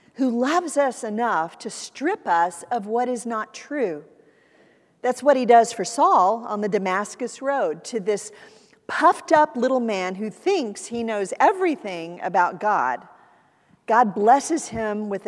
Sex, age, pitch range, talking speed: female, 50-69, 190-255 Hz, 155 wpm